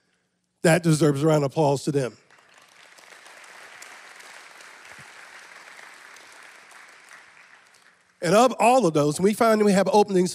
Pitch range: 150-190 Hz